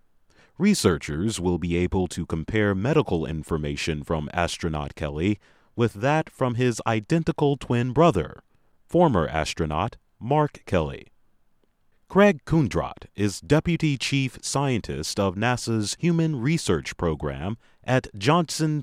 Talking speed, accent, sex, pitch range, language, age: 110 wpm, American, male, 90-140 Hz, English, 30-49